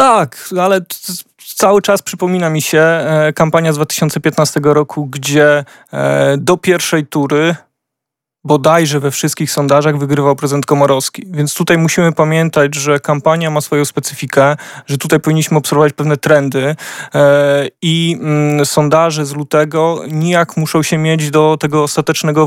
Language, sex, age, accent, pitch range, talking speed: Polish, male, 20-39, native, 145-160 Hz, 130 wpm